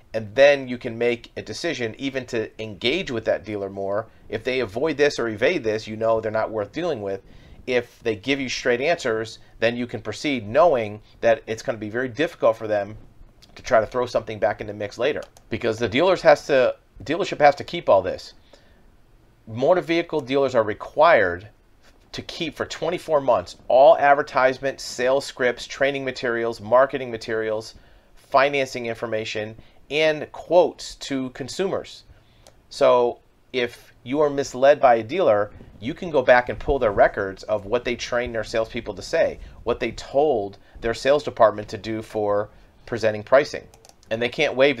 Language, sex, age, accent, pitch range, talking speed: English, male, 40-59, American, 110-130 Hz, 175 wpm